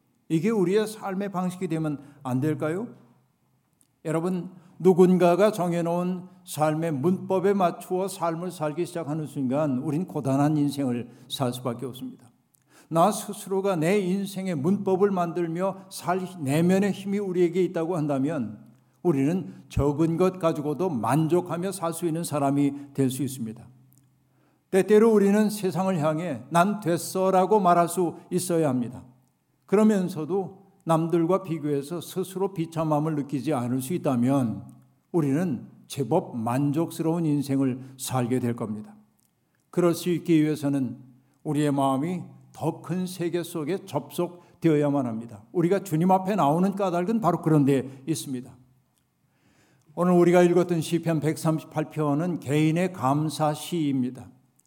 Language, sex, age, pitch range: Korean, male, 60-79, 140-180 Hz